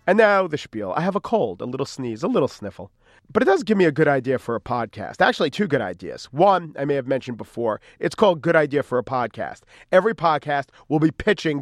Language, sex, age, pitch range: English, male, 40-59, 135-180 Hz